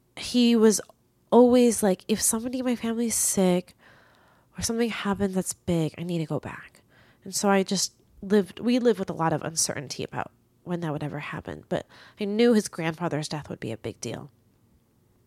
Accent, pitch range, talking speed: American, 160-210 Hz, 195 wpm